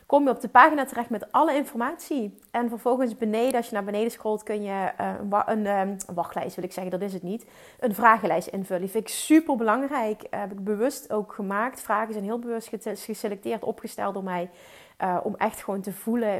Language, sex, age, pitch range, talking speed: Dutch, female, 30-49, 195-250 Hz, 200 wpm